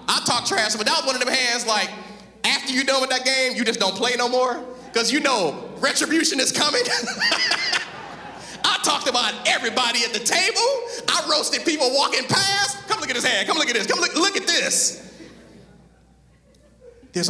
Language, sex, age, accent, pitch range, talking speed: English, male, 30-49, American, 200-285 Hz, 185 wpm